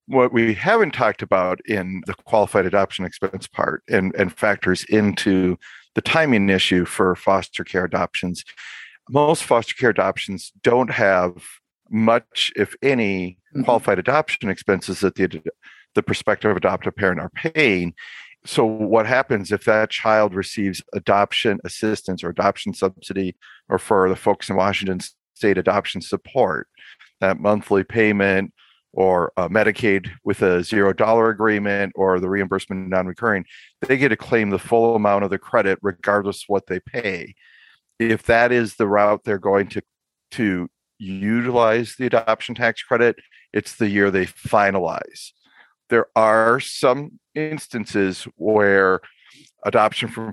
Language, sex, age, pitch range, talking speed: English, male, 50-69, 95-110 Hz, 140 wpm